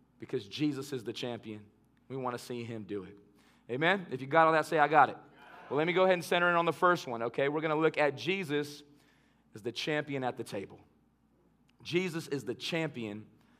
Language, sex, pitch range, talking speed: English, male, 125-155 Hz, 225 wpm